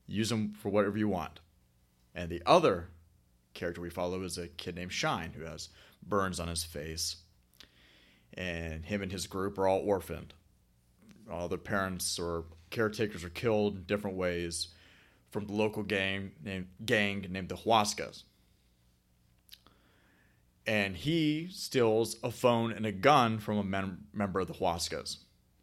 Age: 30-49